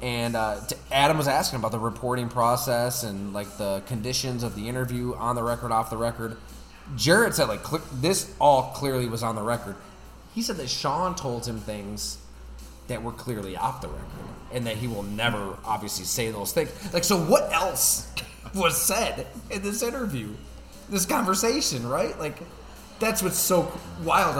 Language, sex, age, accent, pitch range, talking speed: English, male, 20-39, American, 105-155 Hz, 175 wpm